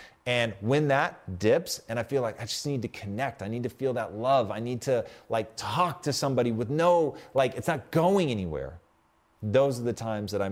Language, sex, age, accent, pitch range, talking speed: English, male, 30-49, American, 100-135 Hz, 225 wpm